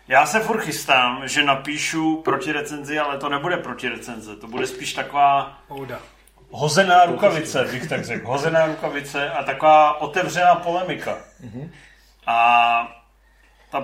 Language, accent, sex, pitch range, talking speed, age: Czech, native, male, 130-155 Hz, 130 wpm, 40-59